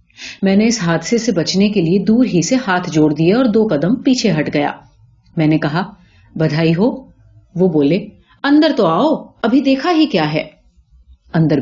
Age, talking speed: 40-59, 175 wpm